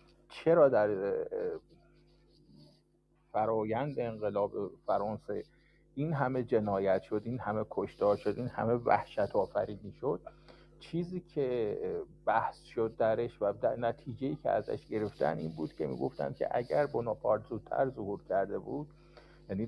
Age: 50-69